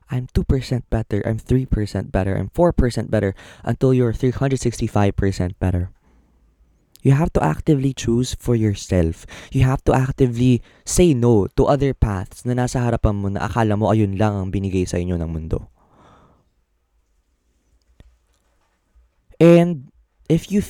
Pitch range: 90-125 Hz